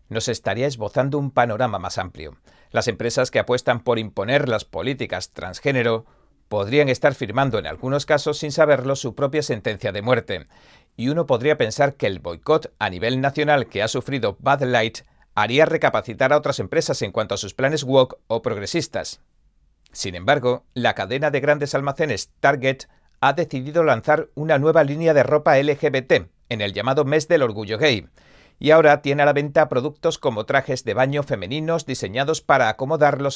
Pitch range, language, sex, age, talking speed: 115-150 Hz, Spanish, male, 40-59, 175 wpm